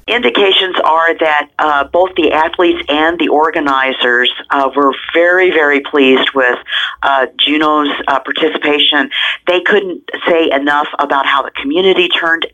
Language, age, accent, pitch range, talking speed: English, 50-69, American, 135-160 Hz, 140 wpm